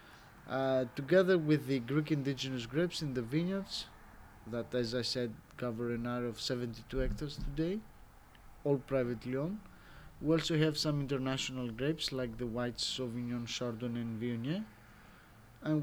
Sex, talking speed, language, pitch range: male, 145 wpm, English, 120-140 Hz